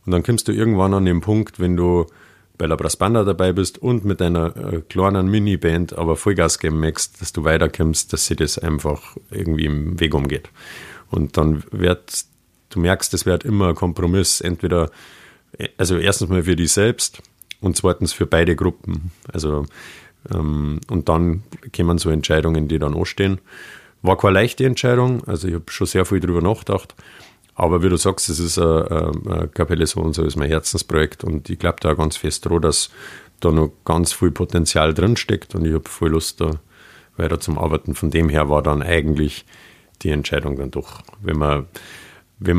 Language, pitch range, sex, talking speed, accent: German, 80-95 Hz, male, 185 wpm, German